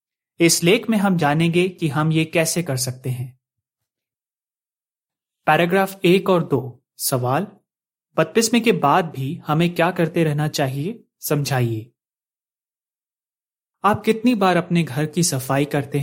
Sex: male